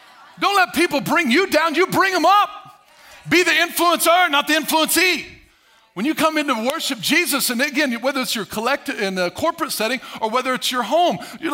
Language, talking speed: English, 205 wpm